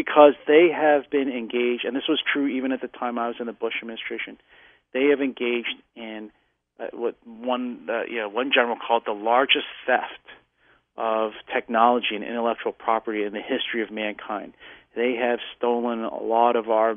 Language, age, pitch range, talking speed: English, 40-59, 115-140 Hz, 180 wpm